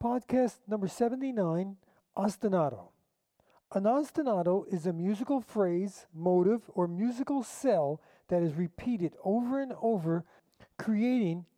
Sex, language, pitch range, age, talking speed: male, English, 175-230 Hz, 50-69, 110 wpm